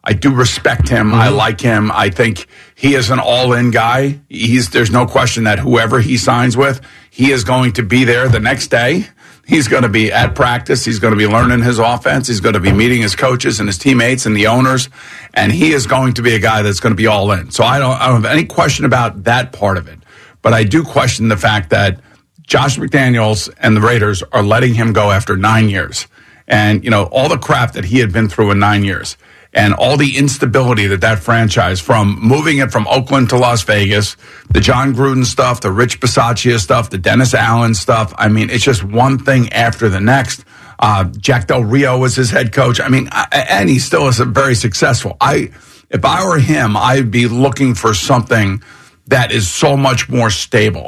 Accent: American